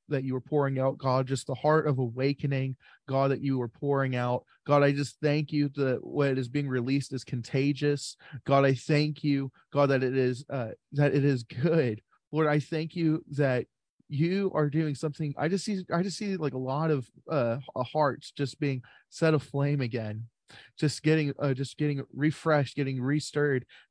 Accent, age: American, 20-39